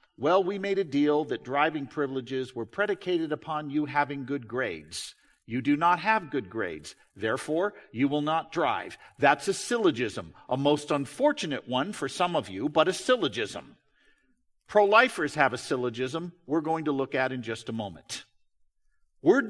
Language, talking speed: English, 165 wpm